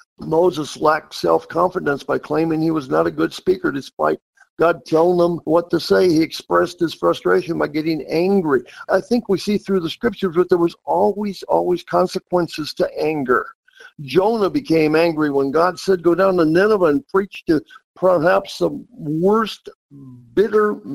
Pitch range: 160-210 Hz